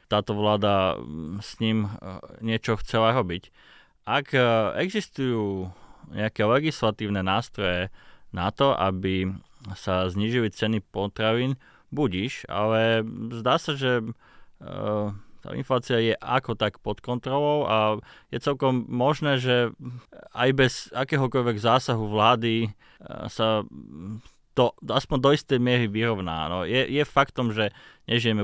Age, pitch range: 20-39, 100-125 Hz